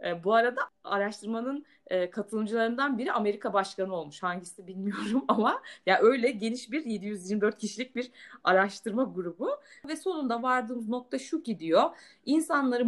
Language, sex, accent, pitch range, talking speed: Turkish, female, native, 195-255 Hz, 135 wpm